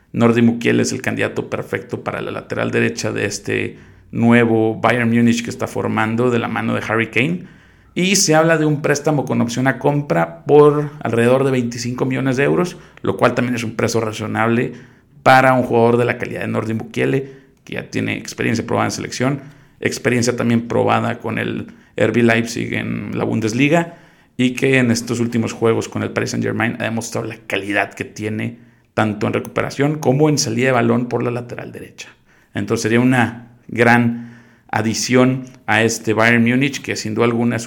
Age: 40-59